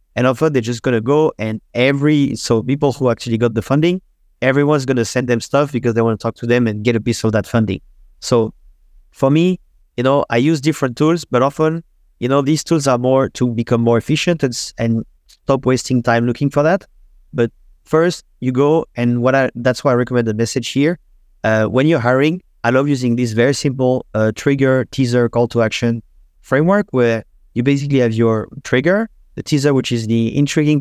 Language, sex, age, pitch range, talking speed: English, male, 30-49, 115-140 Hz, 205 wpm